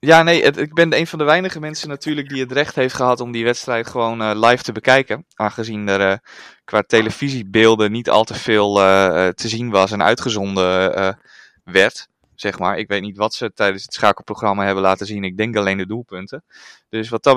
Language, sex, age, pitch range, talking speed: Dutch, male, 20-39, 100-125 Hz, 215 wpm